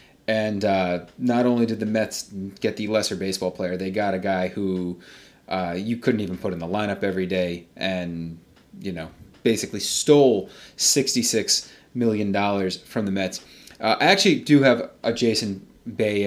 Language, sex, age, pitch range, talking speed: English, male, 30-49, 95-125 Hz, 165 wpm